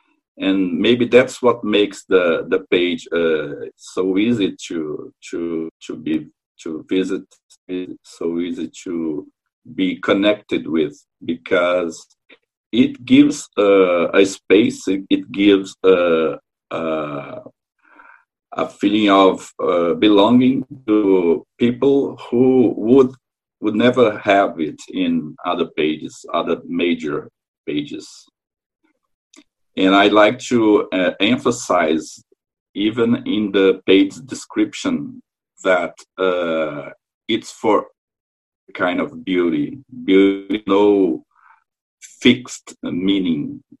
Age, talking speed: 50-69, 100 wpm